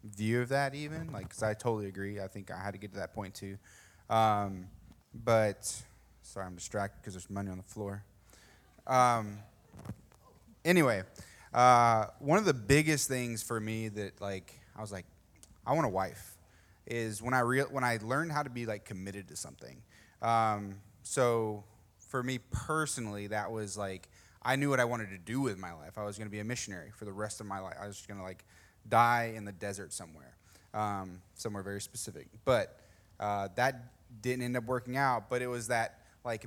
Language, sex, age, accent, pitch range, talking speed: English, male, 20-39, American, 95-120 Hz, 200 wpm